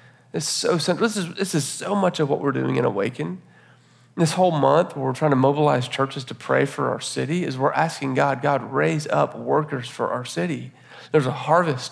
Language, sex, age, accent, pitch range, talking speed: English, male, 40-59, American, 135-175 Hz, 190 wpm